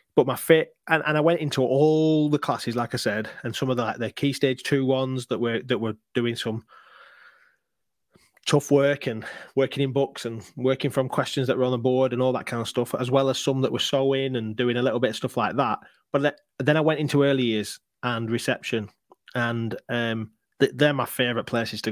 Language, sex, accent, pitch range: English, male, British, 115-135 Hz